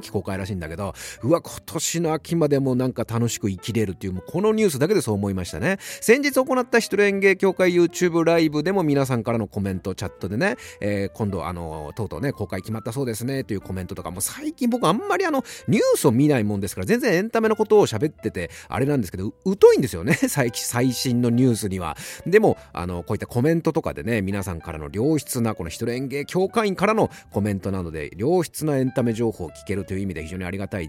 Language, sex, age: Japanese, male, 30-49